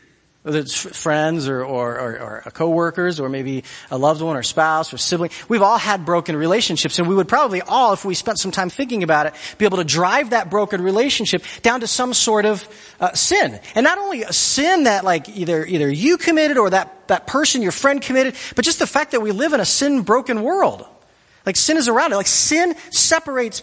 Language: English